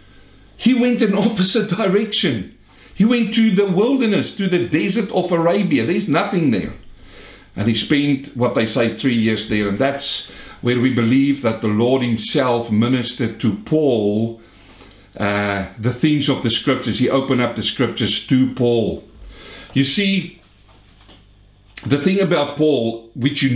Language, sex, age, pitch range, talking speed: English, male, 60-79, 115-175 Hz, 155 wpm